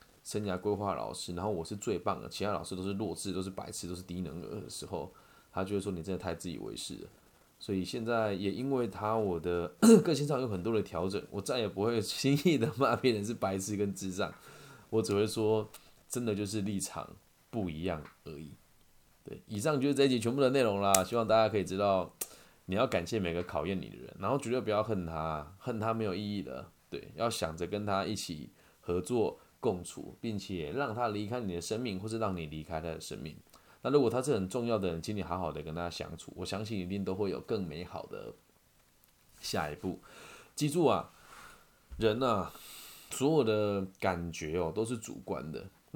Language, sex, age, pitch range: Chinese, male, 20-39, 90-110 Hz